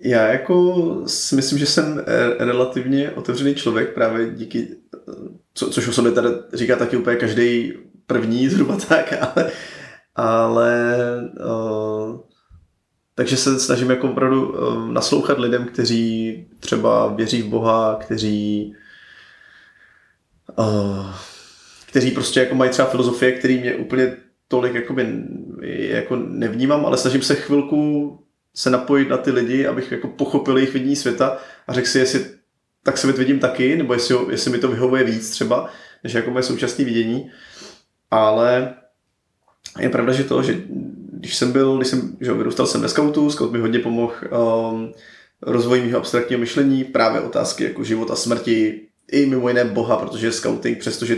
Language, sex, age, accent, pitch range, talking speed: Czech, male, 20-39, native, 115-130 Hz, 145 wpm